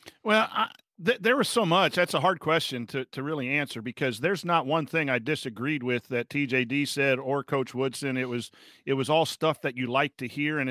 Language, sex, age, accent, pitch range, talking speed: English, male, 50-69, American, 135-155 Hz, 230 wpm